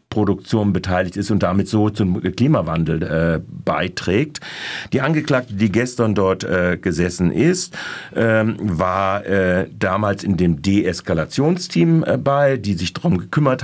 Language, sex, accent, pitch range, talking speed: German, male, German, 100-125 Hz, 135 wpm